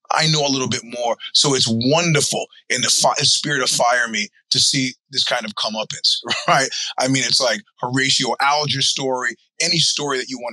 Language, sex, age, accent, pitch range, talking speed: English, male, 20-39, American, 130-160 Hz, 200 wpm